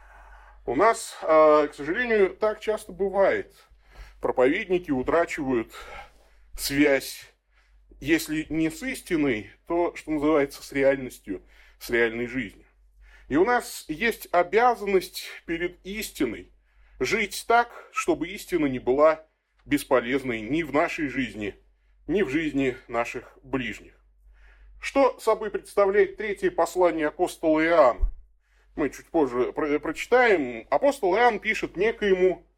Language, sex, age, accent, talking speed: Russian, male, 30-49, native, 110 wpm